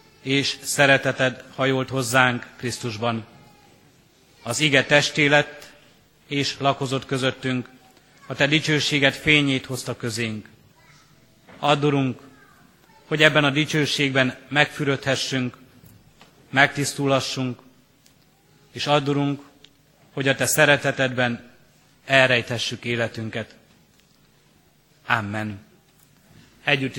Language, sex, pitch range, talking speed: Hungarian, male, 125-140 Hz, 80 wpm